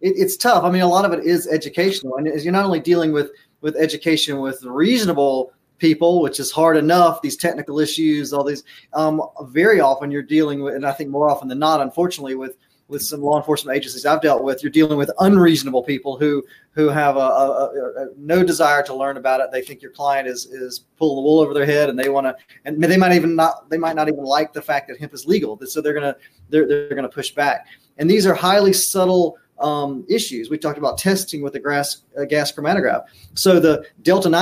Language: English